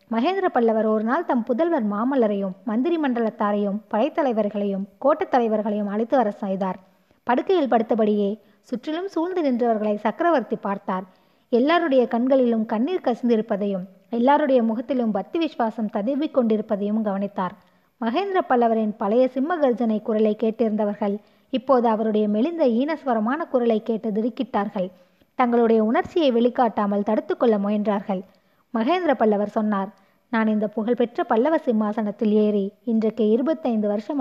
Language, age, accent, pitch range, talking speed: Tamil, 20-39, native, 210-260 Hz, 105 wpm